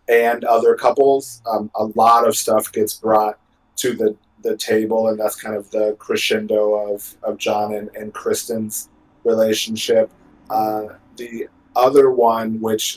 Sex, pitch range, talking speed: male, 105-115 Hz, 150 wpm